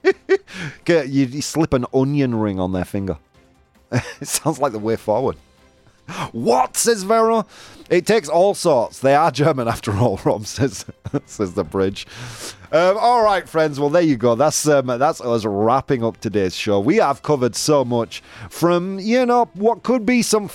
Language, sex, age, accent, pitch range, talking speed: English, male, 30-49, British, 110-165 Hz, 175 wpm